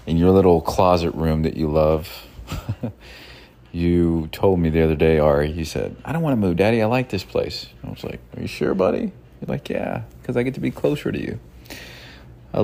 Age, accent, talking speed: 40-59, American, 220 wpm